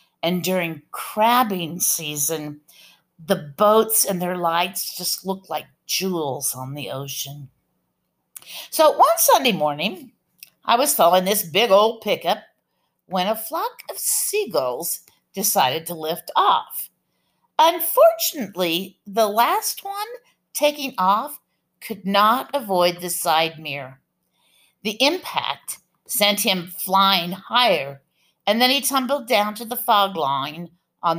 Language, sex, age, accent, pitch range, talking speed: English, female, 50-69, American, 165-260 Hz, 125 wpm